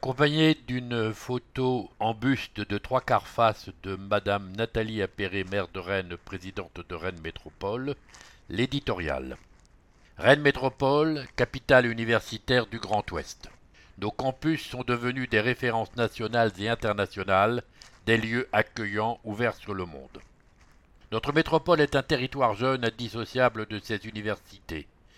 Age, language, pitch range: 60-79, English, 105-125 Hz